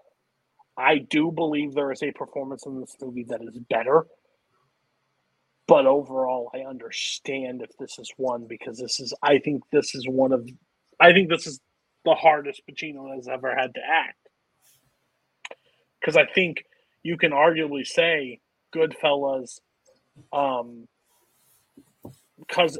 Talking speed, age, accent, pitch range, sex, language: 135 wpm, 30-49, American, 130-155 Hz, male, English